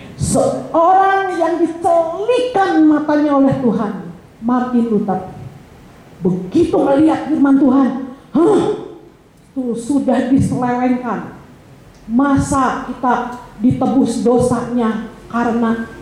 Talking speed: 80 wpm